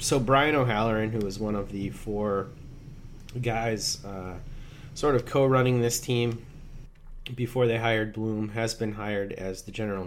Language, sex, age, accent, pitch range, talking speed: English, male, 30-49, American, 100-125 Hz, 155 wpm